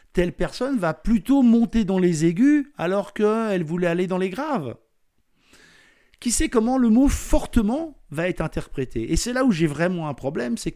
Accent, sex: French, male